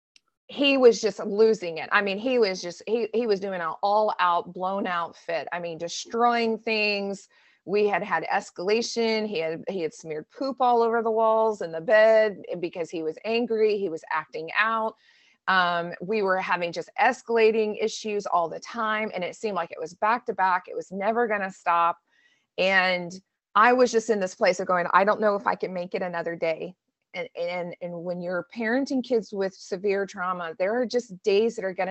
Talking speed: 205 wpm